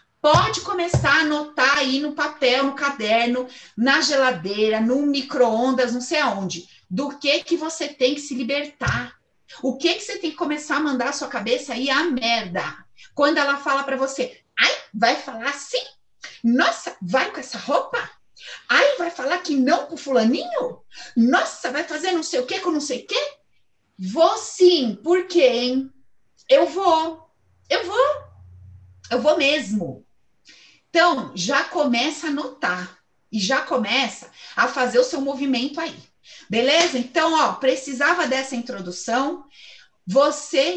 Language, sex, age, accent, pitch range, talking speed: Portuguese, female, 40-59, Brazilian, 245-315 Hz, 155 wpm